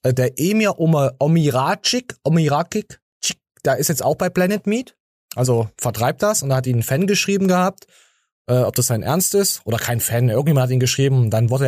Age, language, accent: 20-39, German, German